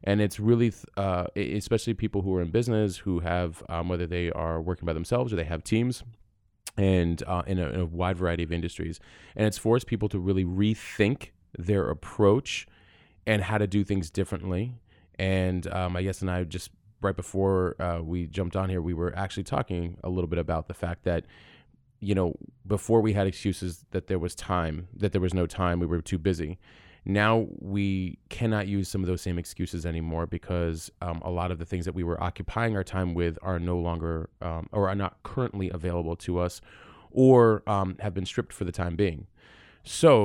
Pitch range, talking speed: 90-105 Hz, 205 wpm